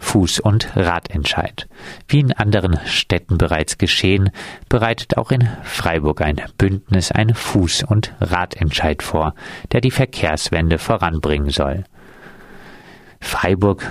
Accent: German